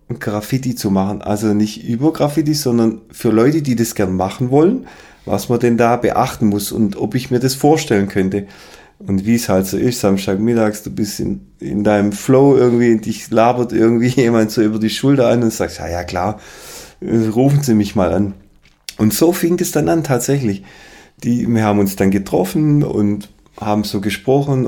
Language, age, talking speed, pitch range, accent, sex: German, 30-49, 190 wpm, 100-130 Hz, German, male